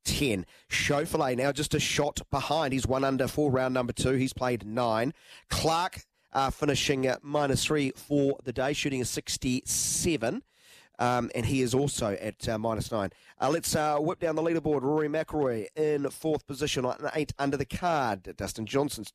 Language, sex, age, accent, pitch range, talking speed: English, male, 30-49, Australian, 115-145 Hz, 180 wpm